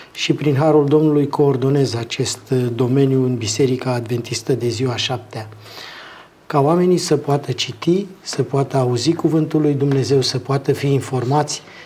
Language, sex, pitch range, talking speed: Romanian, male, 130-155 Hz, 140 wpm